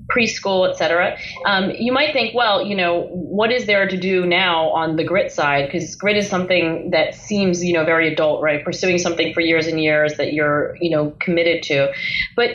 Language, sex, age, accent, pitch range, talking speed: English, female, 30-49, American, 170-230 Hz, 210 wpm